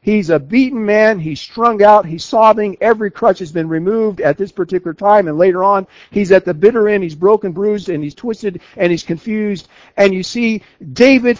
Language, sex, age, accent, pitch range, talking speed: English, male, 50-69, American, 155-230 Hz, 205 wpm